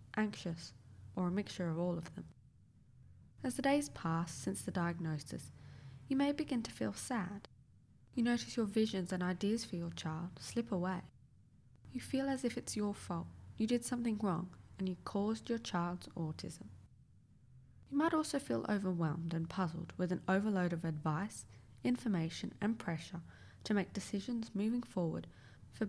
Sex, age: female, 10-29